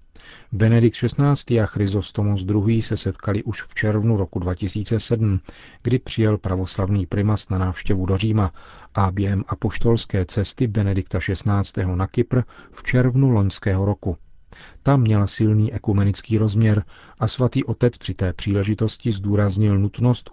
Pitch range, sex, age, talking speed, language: 95-115 Hz, male, 40-59, 135 wpm, Czech